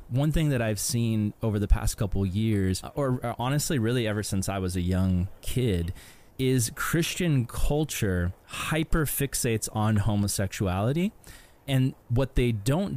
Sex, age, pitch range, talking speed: male, 20-39, 110-135 Hz, 140 wpm